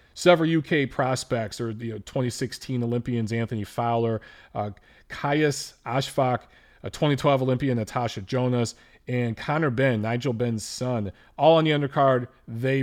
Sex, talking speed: male, 130 wpm